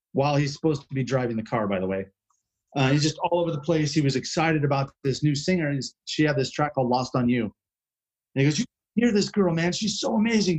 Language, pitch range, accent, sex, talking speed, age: Dutch, 120-155 Hz, American, male, 255 wpm, 30-49